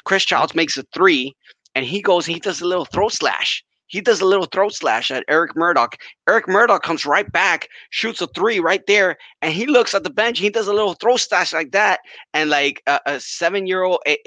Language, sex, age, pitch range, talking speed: English, male, 20-39, 180-285 Hz, 220 wpm